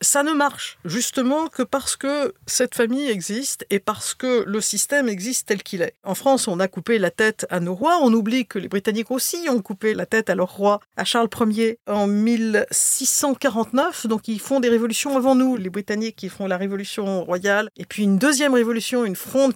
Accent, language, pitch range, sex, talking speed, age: French, French, 195-255 Hz, female, 210 wpm, 50-69